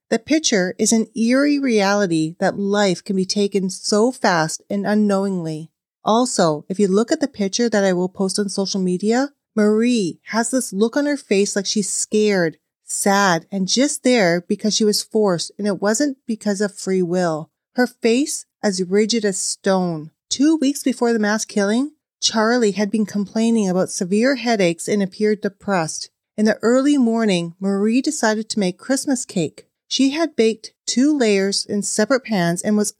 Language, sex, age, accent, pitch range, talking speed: English, female, 40-59, American, 190-235 Hz, 175 wpm